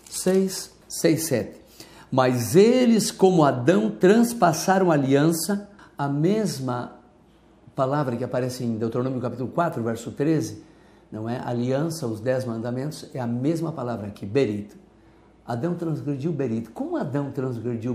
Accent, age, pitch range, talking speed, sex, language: Brazilian, 60-79, 125-185 Hz, 135 wpm, male, Portuguese